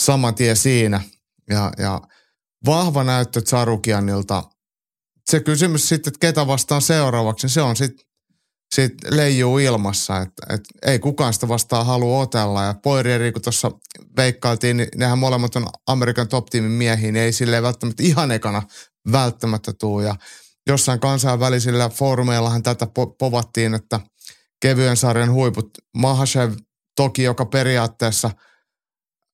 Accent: native